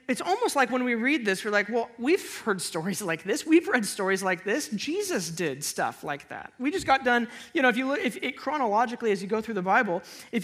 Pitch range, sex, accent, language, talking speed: 195-255 Hz, male, American, English, 255 wpm